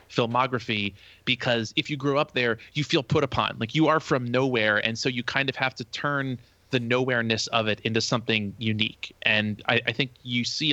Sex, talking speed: male, 205 wpm